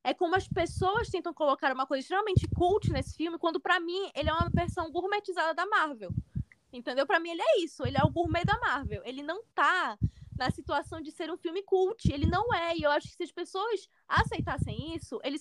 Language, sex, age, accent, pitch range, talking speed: Portuguese, female, 10-29, Brazilian, 270-365 Hz, 220 wpm